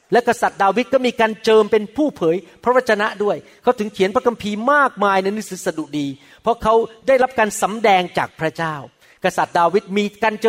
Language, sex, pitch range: Thai, male, 185-240 Hz